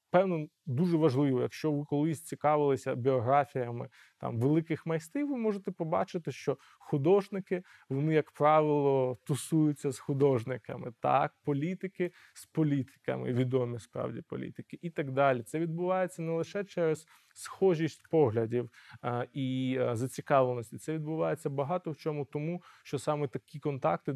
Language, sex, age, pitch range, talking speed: Ukrainian, male, 20-39, 130-165 Hz, 130 wpm